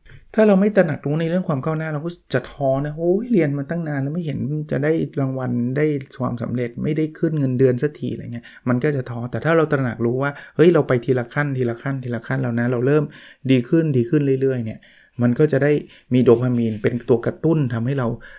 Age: 20-39